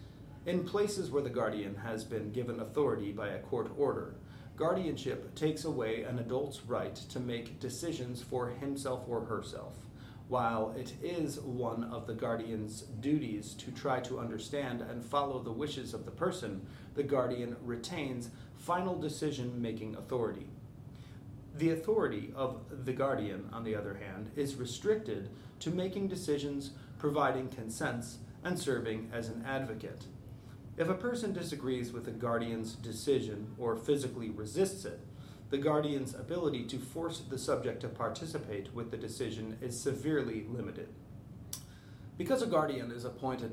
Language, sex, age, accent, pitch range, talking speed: English, male, 30-49, American, 115-145 Hz, 145 wpm